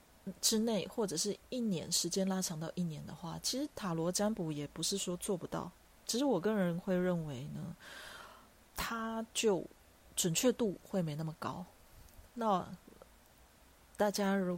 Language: Chinese